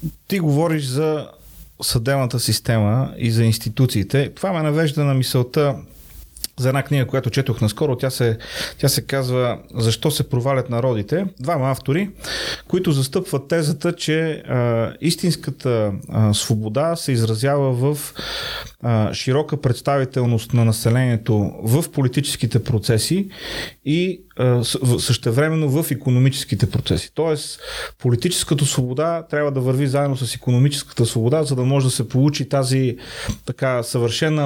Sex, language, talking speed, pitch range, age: male, Bulgarian, 125 wpm, 125-150 Hz, 30-49